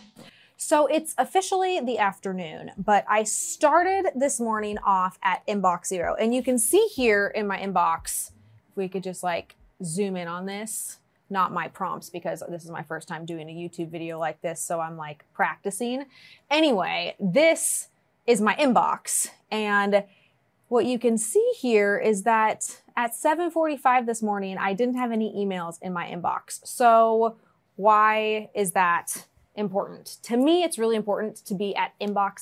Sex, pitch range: female, 185-240 Hz